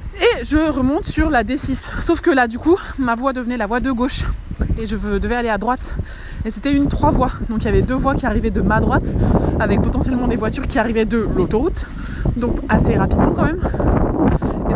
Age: 20-39